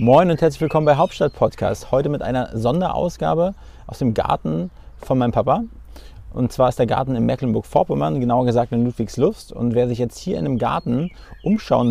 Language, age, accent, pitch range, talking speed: German, 30-49, German, 115-140 Hz, 180 wpm